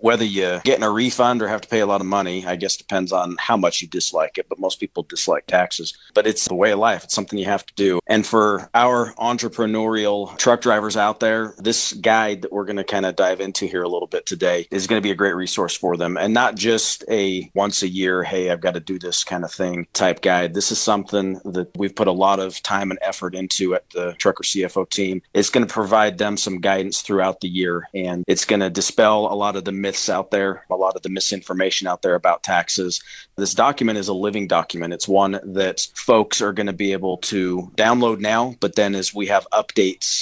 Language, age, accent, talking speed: English, 40-59, American, 245 wpm